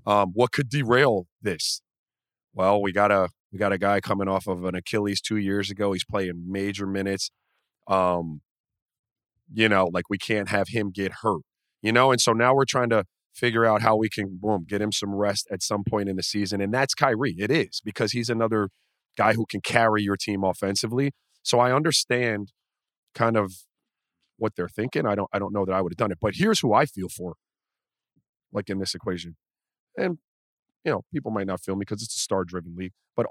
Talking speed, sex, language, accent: 215 wpm, male, English, American